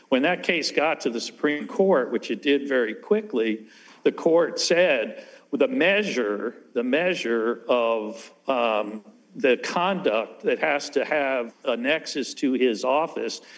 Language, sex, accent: English, male, American